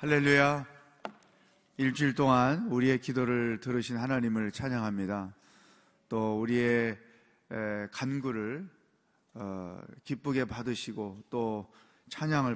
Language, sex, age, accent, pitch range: Korean, male, 30-49, native, 105-155 Hz